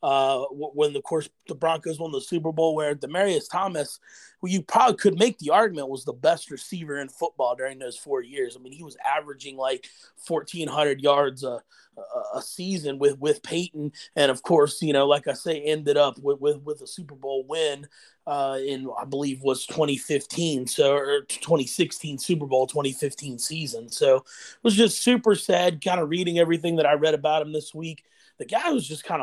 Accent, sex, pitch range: American, male, 145-170 Hz